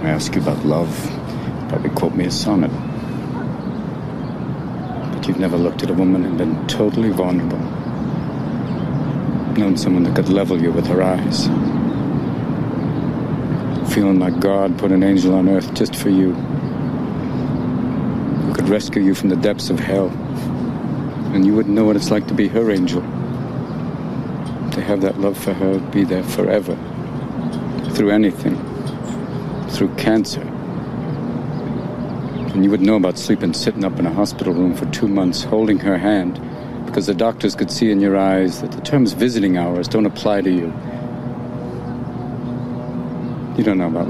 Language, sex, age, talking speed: English, male, 60-79, 155 wpm